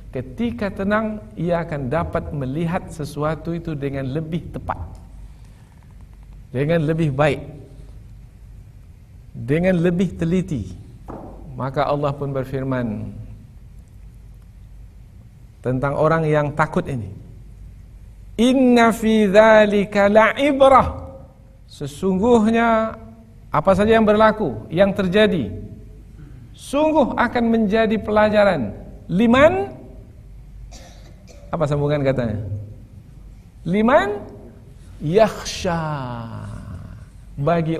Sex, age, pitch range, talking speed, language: male, 50-69, 110-170 Hz, 75 wpm, Indonesian